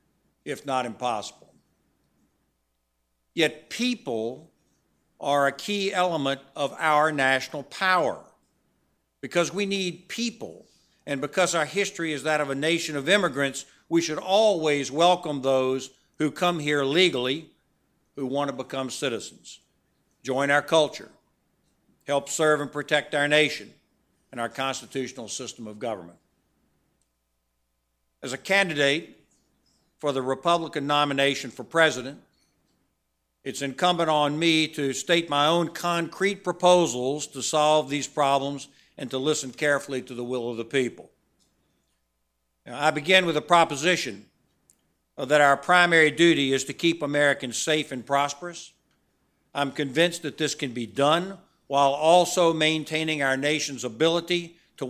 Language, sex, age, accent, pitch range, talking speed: English, male, 60-79, American, 135-165 Hz, 130 wpm